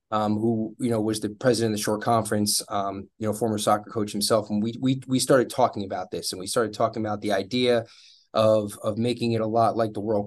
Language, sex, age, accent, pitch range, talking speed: English, male, 20-39, American, 105-125 Hz, 245 wpm